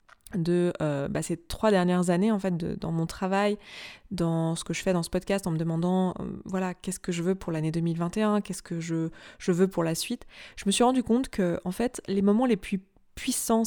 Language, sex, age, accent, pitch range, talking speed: French, female, 20-39, French, 180-215 Hz, 240 wpm